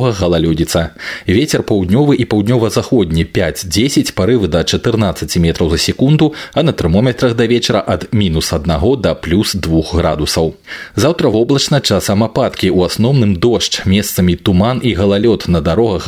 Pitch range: 90-120 Hz